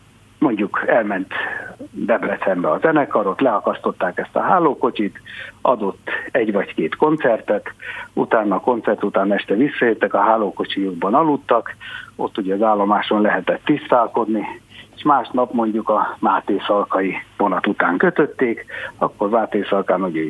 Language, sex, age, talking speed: Hungarian, male, 60-79, 120 wpm